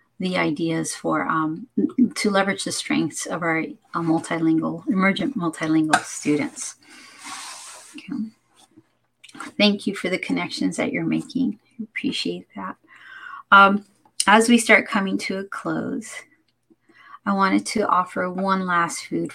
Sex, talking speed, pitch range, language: female, 125 wpm, 175-225 Hz, English